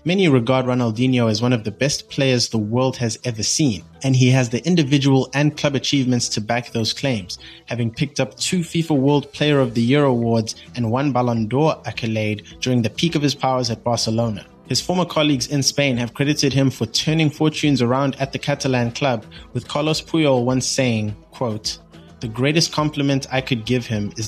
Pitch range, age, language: 115-135 Hz, 20-39, English